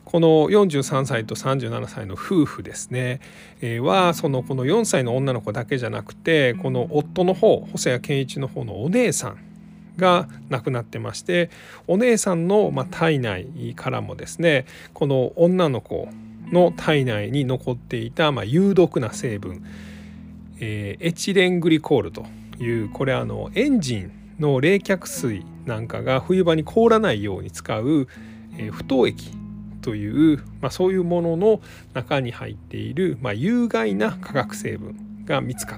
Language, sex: Japanese, male